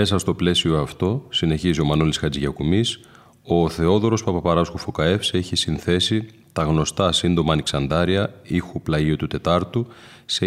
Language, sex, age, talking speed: Greek, male, 30-49, 140 wpm